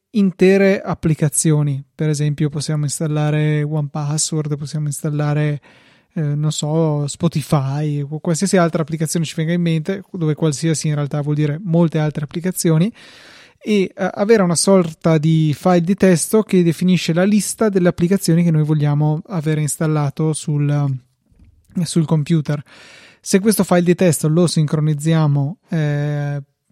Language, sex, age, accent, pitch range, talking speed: Italian, male, 20-39, native, 150-175 Hz, 135 wpm